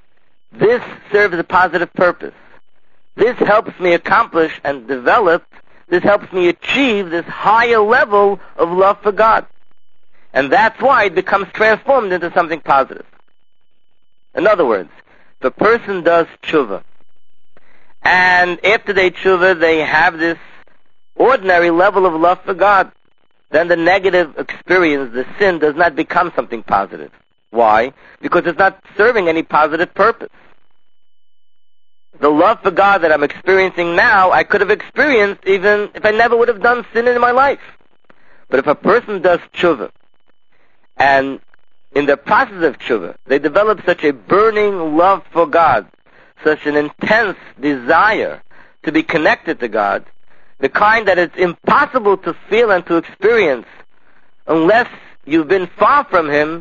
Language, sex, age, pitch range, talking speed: English, male, 50-69, 165-210 Hz, 145 wpm